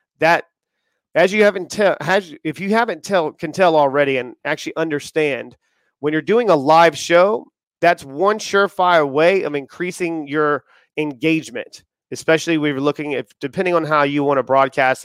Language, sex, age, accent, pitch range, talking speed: English, male, 30-49, American, 140-170 Hz, 165 wpm